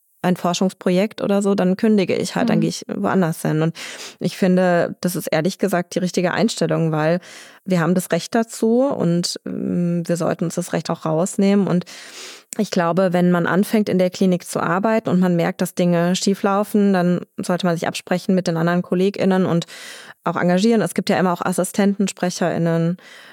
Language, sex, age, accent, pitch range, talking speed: German, female, 20-39, German, 170-200 Hz, 185 wpm